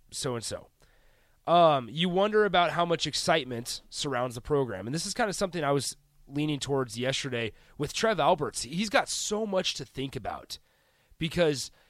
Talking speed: 160 wpm